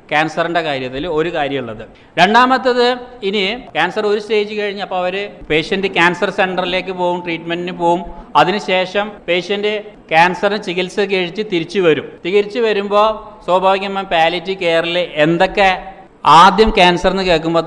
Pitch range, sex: 160-195 Hz, male